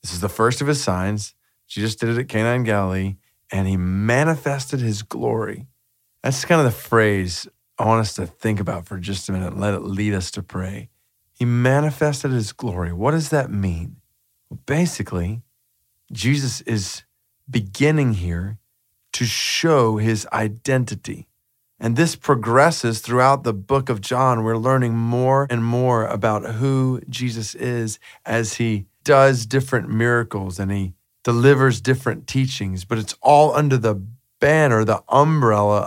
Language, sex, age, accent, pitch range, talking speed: English, male, 40-59, American, 105-135 Hz, 155 wpm